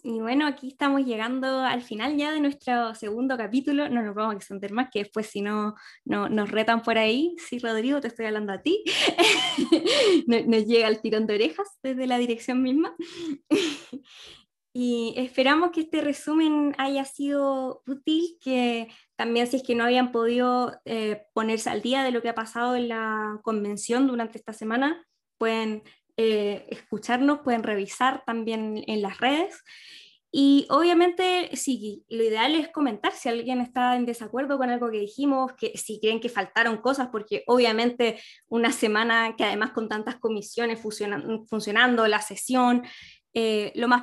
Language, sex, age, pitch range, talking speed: Spanish, female, 20-39, 225-275 Hz, 170 wpm